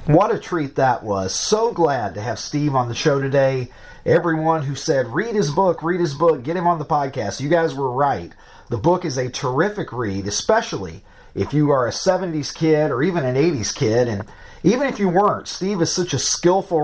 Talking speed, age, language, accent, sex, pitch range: 215 wpm, 30-49, English, American, male, 130-185 Hz